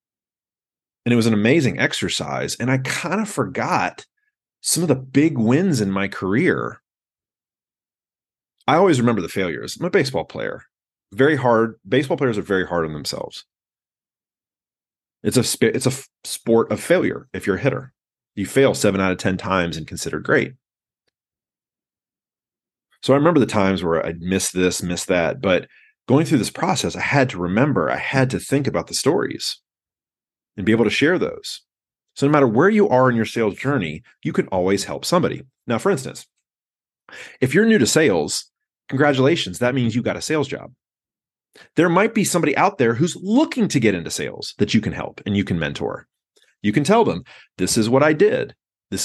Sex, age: male, 30-49